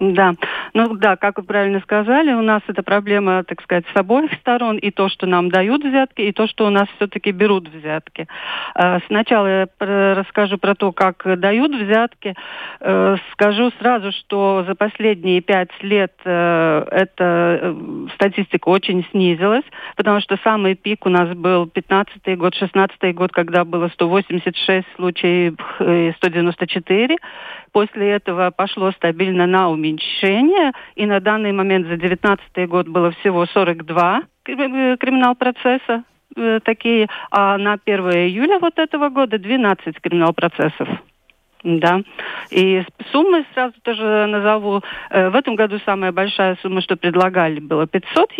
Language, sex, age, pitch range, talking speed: Russian, female, 40-59, 180-220 Hz, 140 wpm